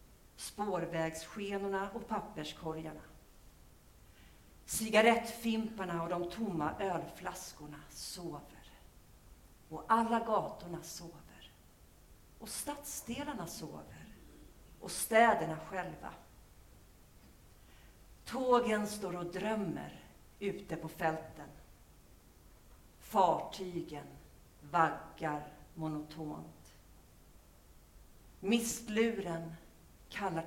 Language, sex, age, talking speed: Swedish, female, 50-69, 60 wpm